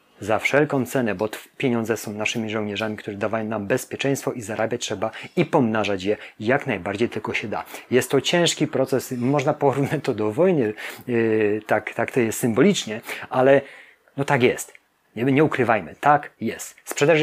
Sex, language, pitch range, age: male, Polish, 110-140 Hz, 30-49